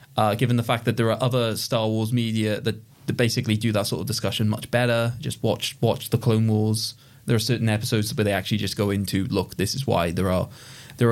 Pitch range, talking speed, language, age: 115-145 Hz, 235 wpm, English, 20-39